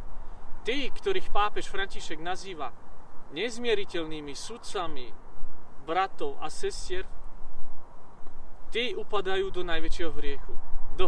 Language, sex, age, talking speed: Slovak, male, 40-59, 85 wpm